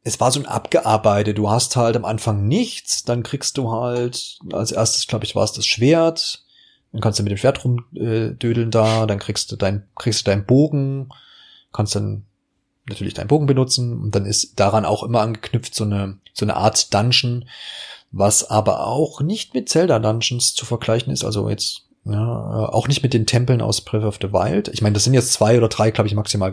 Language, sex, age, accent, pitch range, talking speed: German, male, 30-49, German, 100-120 Hz, 210 wpm